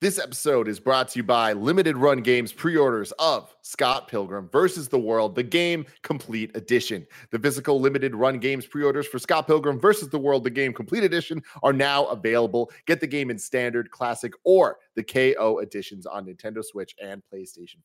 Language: English